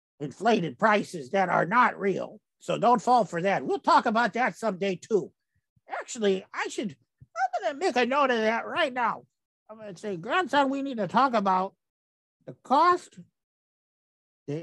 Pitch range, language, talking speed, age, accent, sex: 185-280 Hz, English, 170 wpm, 50-69, American, male